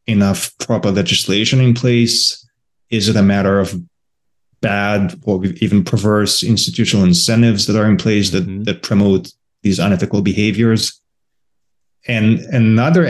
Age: 30-49